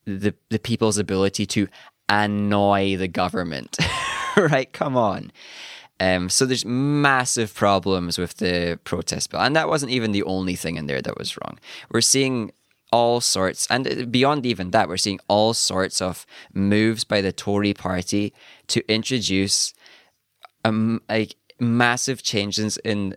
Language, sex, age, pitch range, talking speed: English, male, 20-39, 95-120 Hz, 140 wpm